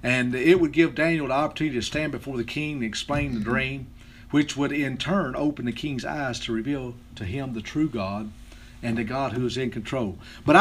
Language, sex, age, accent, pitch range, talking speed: English, male, 50-69, American, 130-185 Hz, 220 wpm